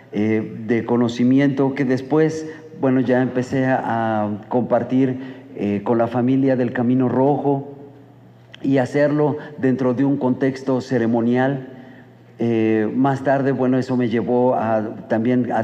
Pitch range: 120-140 Hz